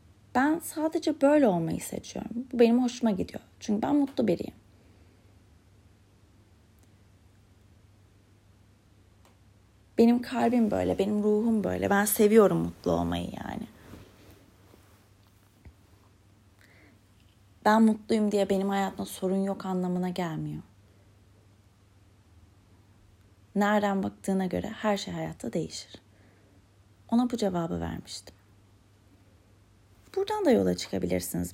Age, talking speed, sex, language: 30-49, 90 wpm, female, Turkish